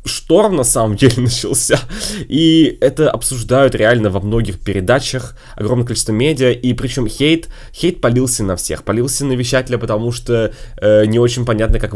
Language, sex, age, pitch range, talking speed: Russian, male, 20-39, 105-130 Hz, 160 wpm